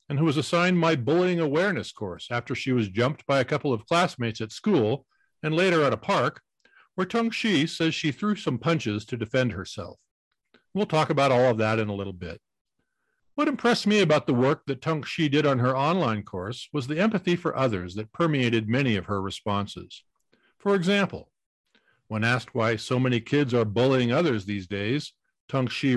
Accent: American